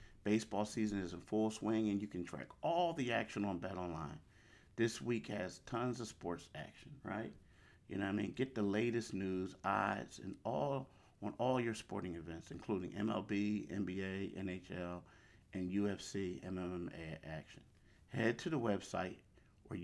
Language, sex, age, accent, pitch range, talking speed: English, male, 50-69, American, 90-110 Hz, 160 wpm